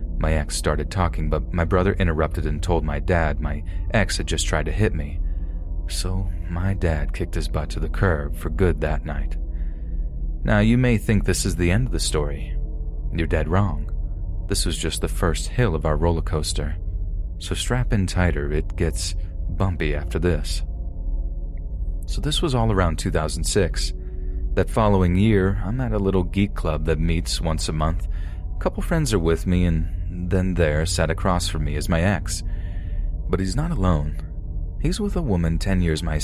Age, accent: 30-49, American